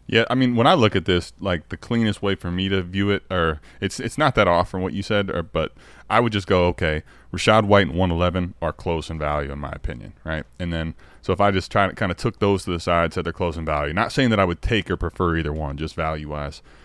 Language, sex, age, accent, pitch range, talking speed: English, male, 20-39, American, 85-105 Hz, 280 wpm